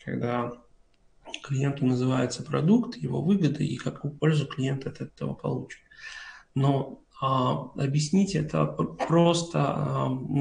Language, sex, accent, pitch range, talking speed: Russian, male, native, 135-160 Hz, 110 wpm